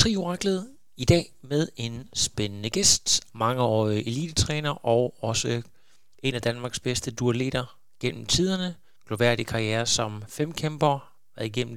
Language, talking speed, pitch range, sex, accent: Danish, 120 wpm, 115-140 Hz, male, native